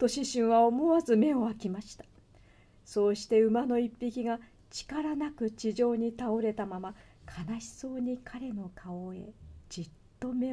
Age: 40-59